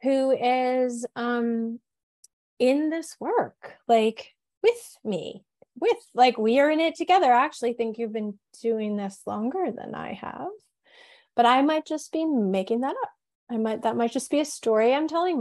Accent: American